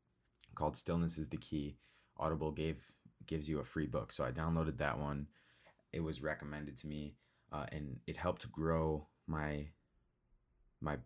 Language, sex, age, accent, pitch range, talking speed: English, male, 20-39, American, 75-85 Hz, 155 wpm